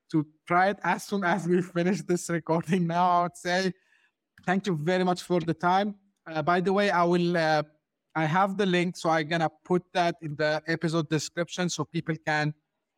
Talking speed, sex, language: 205 wpm, male, English